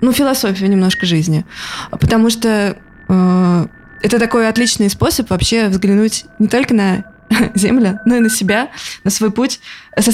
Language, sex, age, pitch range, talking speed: Russian, female, 20-39, 200-250 Hz, 150 wpm